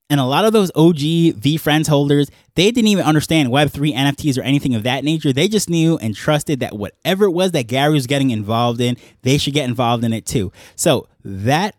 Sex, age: male, 20-39